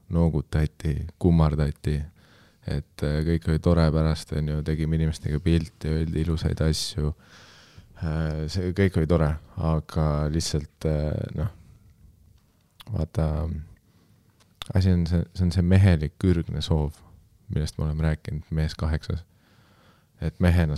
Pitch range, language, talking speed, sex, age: 75-95 Hz, English, 115 wpm, male, 30-49